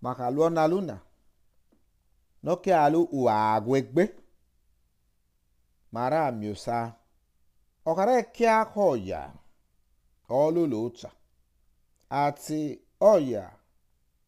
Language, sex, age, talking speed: English, male, 50-69, 85 wpm